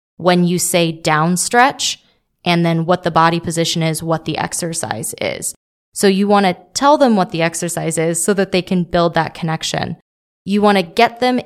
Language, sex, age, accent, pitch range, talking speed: English, female, 20-39, American, 165-195 Hz, 195 wpm